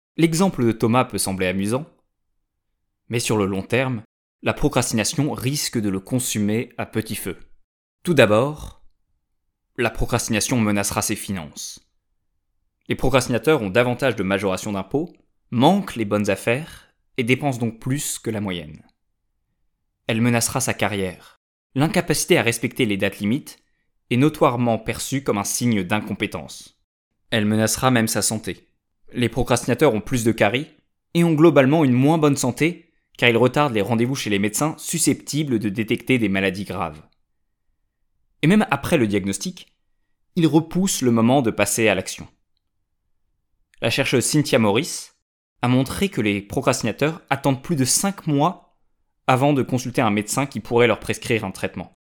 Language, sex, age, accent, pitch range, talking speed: French, male, 20-39, French, 100-135 Hz, 150 wpm